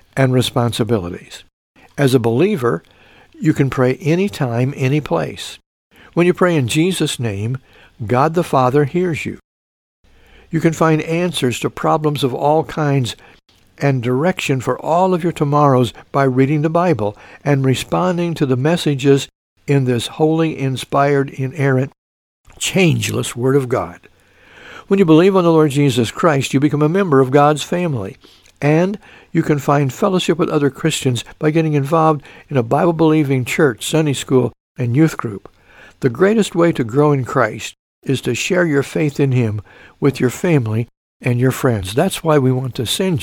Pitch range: 115-155 Hz